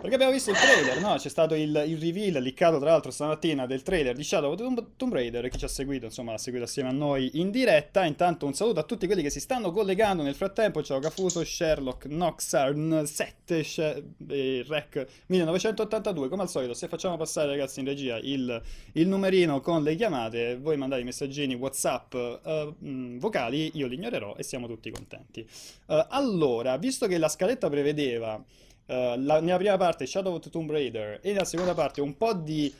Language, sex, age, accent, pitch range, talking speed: Italian, male, 20-39, native, 125-170 Hz, 195 wpm